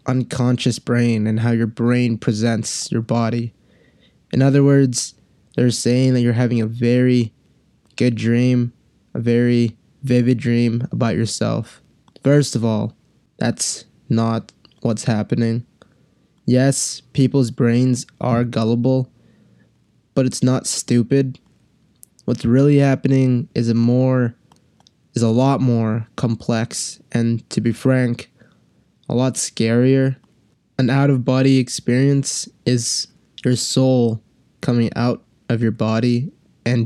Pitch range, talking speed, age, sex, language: 115-130 Hz, 120 wpm, 20-39, male, English